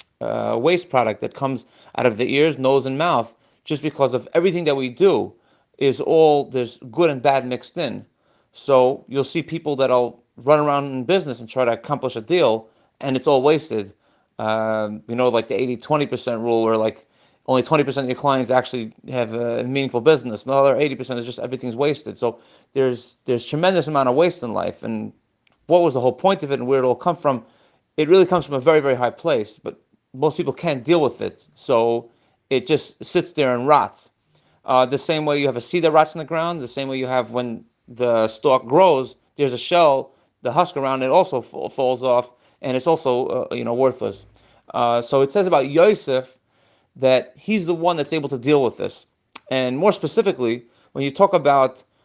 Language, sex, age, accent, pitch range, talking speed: English, male, 30-49, American, 120-150 Hz, 205 wpm